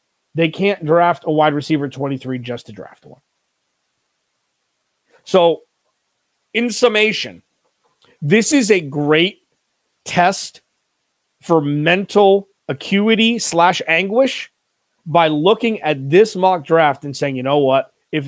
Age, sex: 40-59, male